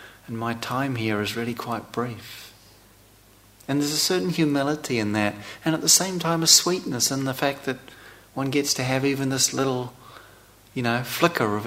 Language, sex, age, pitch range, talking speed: English, male, 40-59, 105-140 Hz, 190 wpm